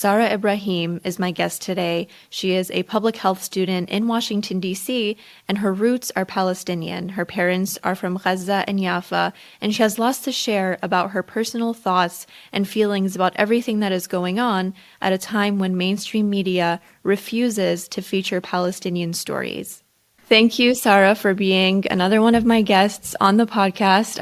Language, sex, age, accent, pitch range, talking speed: English, female, 20-39, American, 175-200 Hz, 170 wpm